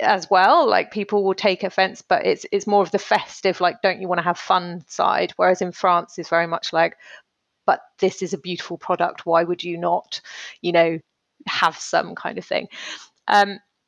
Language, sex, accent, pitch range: English, female, British, 170-205 Hz